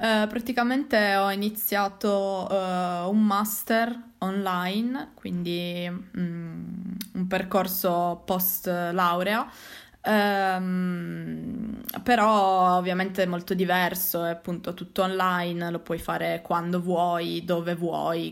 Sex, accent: female, native